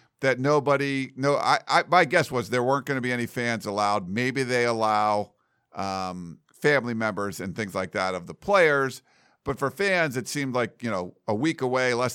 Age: 50-69